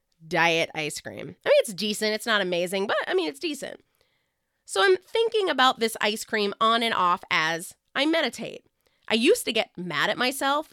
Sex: female